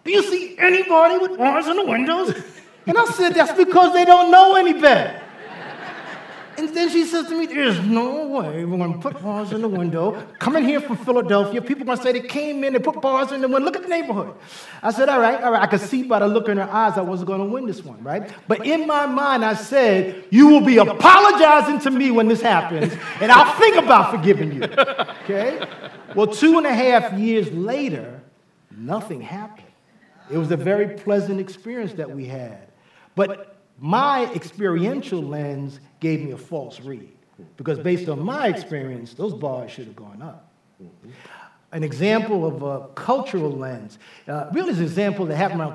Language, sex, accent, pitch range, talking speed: English, male, American, 170-275 Hz, 205 wpm